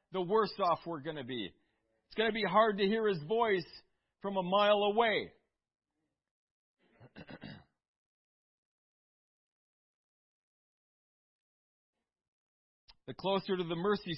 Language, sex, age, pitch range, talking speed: English, male, 40-59, 170-205 Hz, 105 wpm